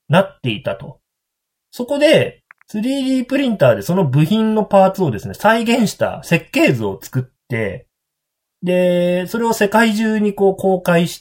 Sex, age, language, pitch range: male, 30-49, Japanese, 130-195 Hz